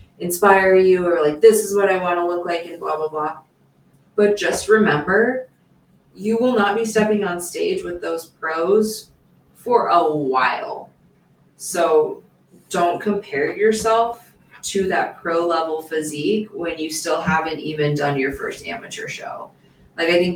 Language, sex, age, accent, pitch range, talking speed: English, female, 20-39, American, 155-205 Hz, 160 wpm